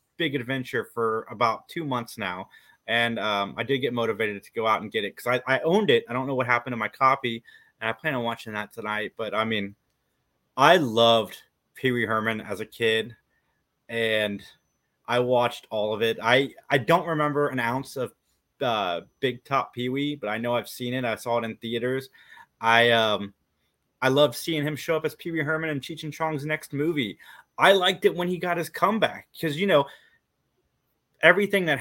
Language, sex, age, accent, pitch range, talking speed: English, male, 30-49, American, 115-150 Hz, 200 wpm